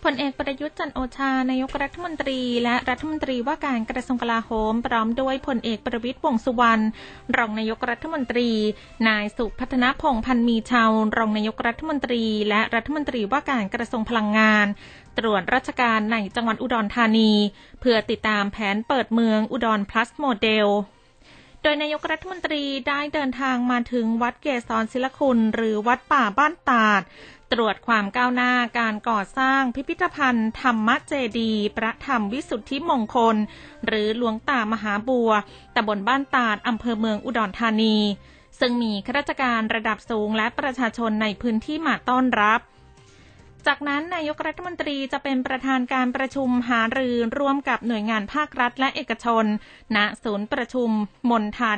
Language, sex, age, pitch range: Thai, female, 20-39, 220-265 Hz